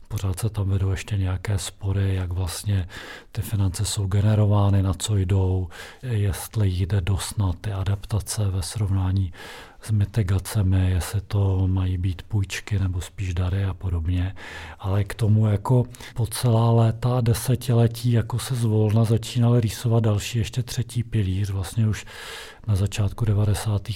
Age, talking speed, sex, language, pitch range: 40-59, 145 wpm, male, Czech, 100-115 Hz